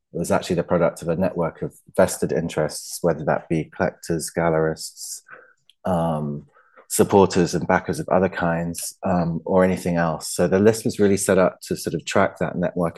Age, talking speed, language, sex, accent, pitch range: 20-39, 180 wpm, English, male, British, 90-105 Hz